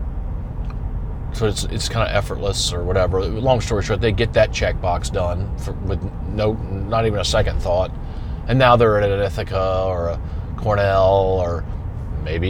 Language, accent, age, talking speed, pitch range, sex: English, American, 30-49, 170 wpm, 85-105 Hz, male